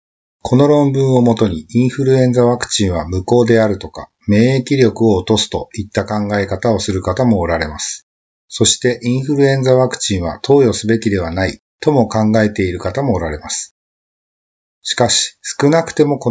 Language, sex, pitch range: Japanese, male, 95-120 Hz